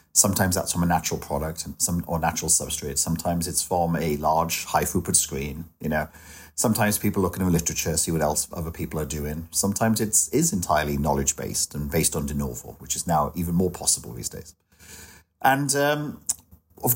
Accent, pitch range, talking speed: British, 80-105 Hz, 200 wpm